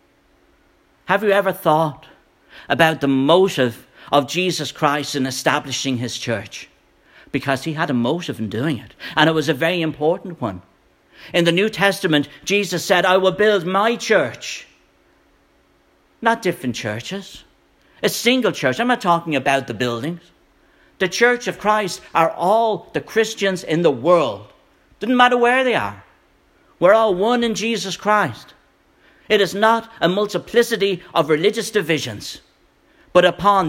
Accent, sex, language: British, male, English